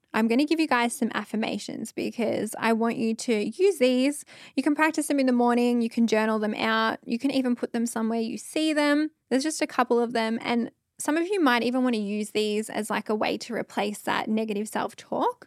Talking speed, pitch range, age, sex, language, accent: 235 wpm, 225-280 Hz, 10-29, female, English, Australian